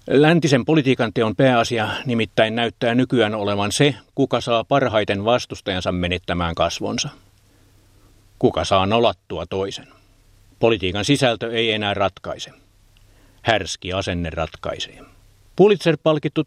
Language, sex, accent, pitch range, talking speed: Finnish, male, native, 100-120 Hz, 100 wpm